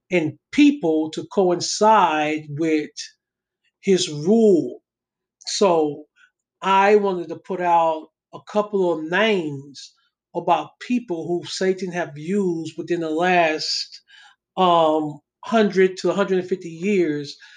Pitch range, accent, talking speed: 155-185 Hz, American, 105 wpm